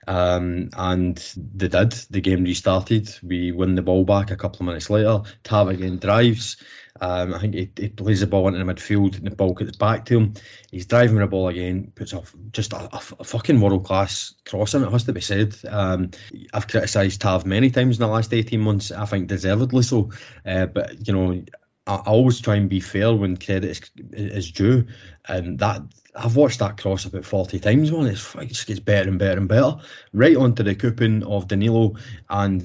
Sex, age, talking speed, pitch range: male, 20-39, 210 wpm, 95-115 Hz